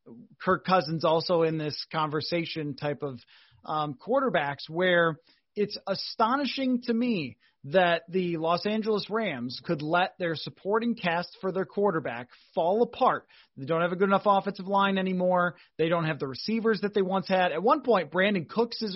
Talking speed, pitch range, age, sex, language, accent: 170 wpm, 160-210 Hz, 30-49, male, English, American